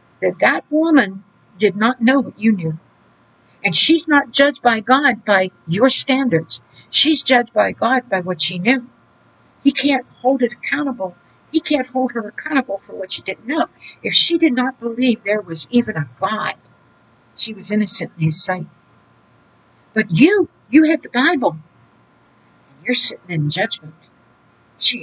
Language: English